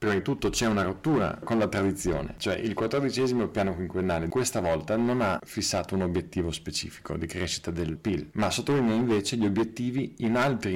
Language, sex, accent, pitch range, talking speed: Italian, male, native, 90-115 Hz, 185 wpm